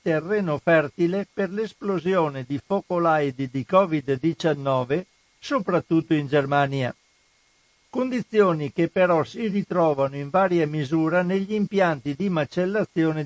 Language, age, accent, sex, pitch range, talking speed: Italian, 60-79, native, male, 145-185 Hz, 105 wpm